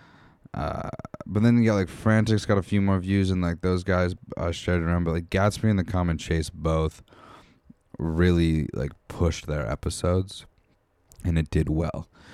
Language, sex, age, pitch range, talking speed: English, male, 20-39, 80-95 Hz, 175 wpm